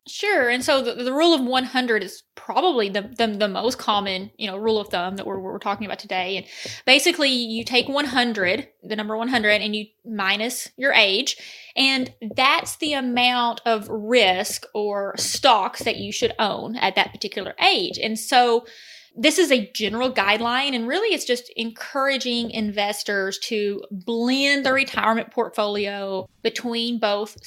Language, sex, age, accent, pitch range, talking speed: English, female, 20-39, American, 210-255 Hz, 165 wpm